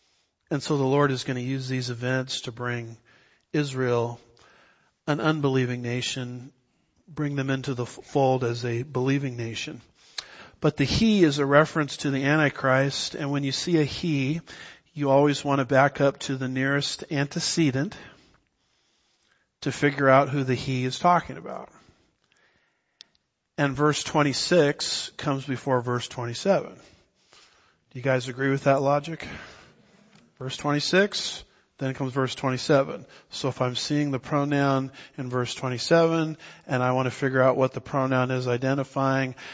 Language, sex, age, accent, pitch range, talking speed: English, male, 50-69, American, 130-150 Hz, 150 wpm